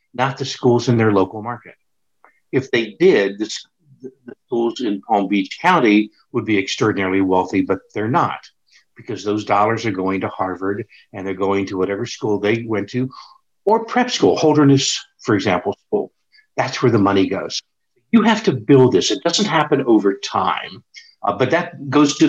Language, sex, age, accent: English, male, 60-79, American